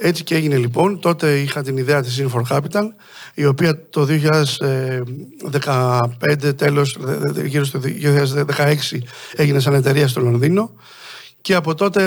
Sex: male